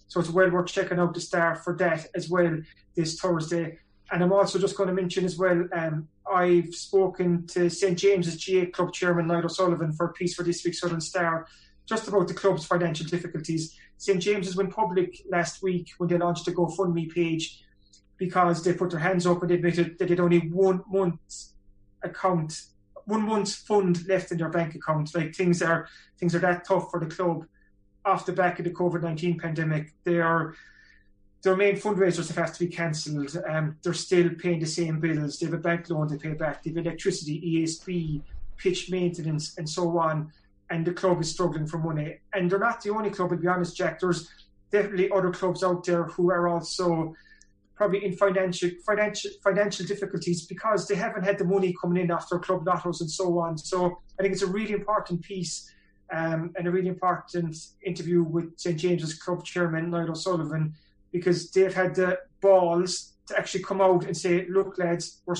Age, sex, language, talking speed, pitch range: 20-39, male, English, 195 wpm, 165-185 Hz